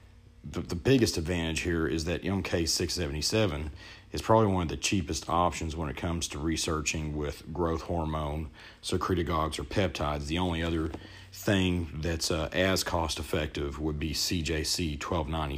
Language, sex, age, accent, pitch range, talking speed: English, male, 40-59, American, 80-95 Hz, 145 wpm